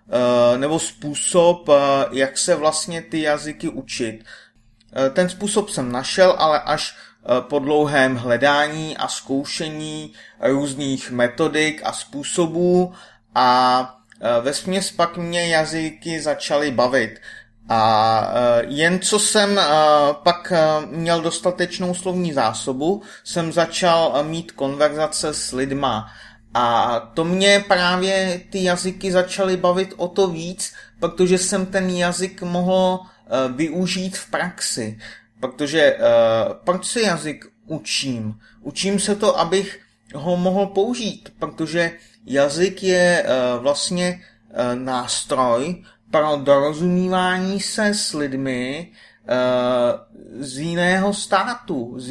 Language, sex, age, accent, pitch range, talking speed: Czech, male, 30-49, native, 135-185 Hz, 110 wpm